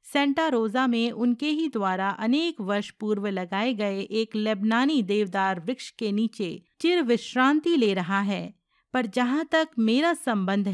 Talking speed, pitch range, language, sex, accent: 150 wpm, 210-280 Hz, Hindi, female, native